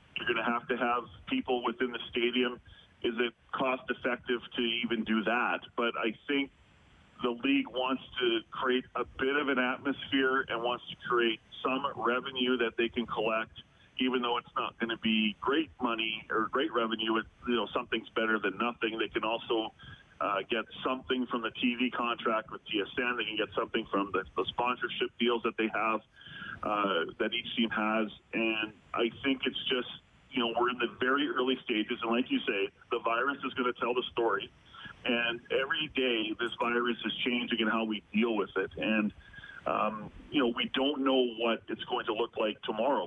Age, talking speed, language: 40-59, 195 wpm, English